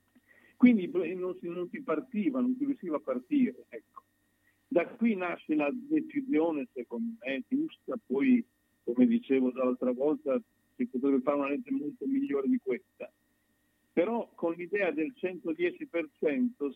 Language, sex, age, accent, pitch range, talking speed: Italian, male, 50-69, native, 145-245 Hz, 140 wpm